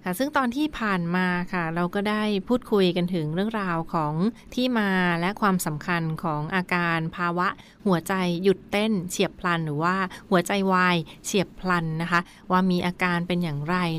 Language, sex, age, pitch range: Thai, female, 30-49, 170-200 Hz